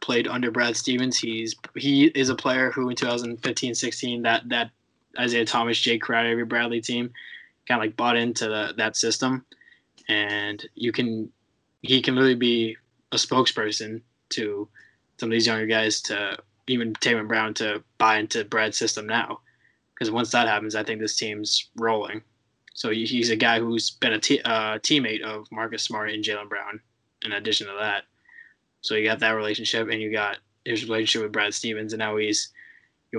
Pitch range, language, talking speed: 110-120 Hz, English, 185 wpm